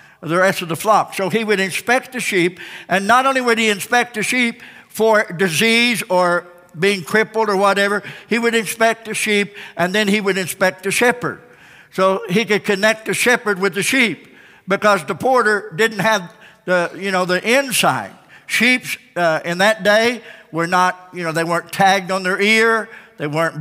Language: English